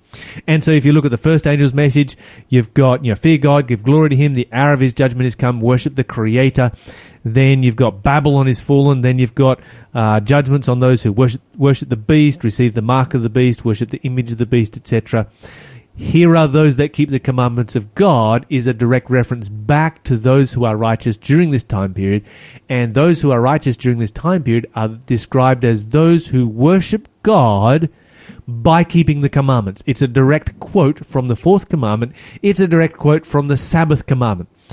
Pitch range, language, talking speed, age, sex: 120-150 Hz, English, 205 wpm, 30-49, male